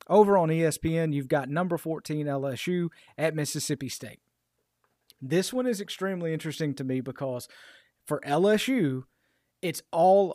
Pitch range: 145-180 Hz